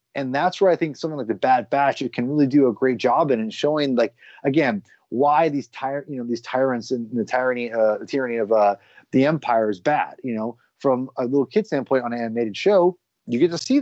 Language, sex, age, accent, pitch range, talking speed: English, male, 30-49, American, 120-155 Hz, 235 wpm